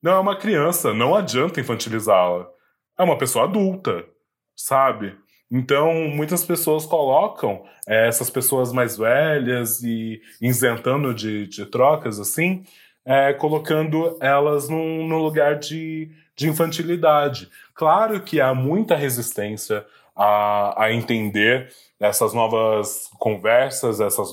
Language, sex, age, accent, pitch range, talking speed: Portuguese, male, 20-39, Brazilian, 110-155 Hz, 115 wpm